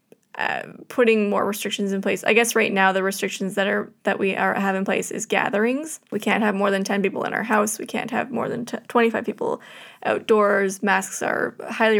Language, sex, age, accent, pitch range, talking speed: English, female, 20-39, American, 195-225 Hz, 220 wpm